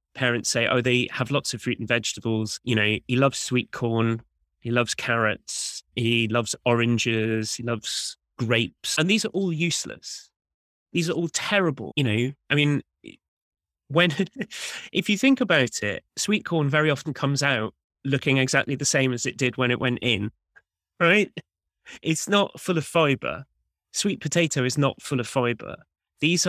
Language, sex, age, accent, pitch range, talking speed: English, male, 20-39, British, 120-160 Hz, 170 wpm